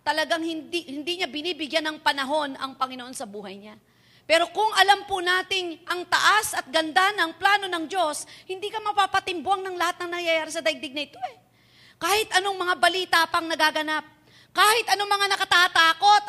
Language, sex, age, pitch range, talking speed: Filipino, female, 40-59, 300-380 Hz, 175 wpm